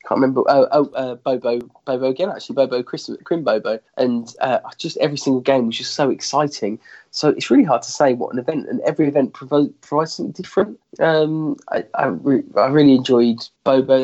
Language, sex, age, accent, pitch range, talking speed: English, male, 20-39, British, 125-165 Hz, 205 wpm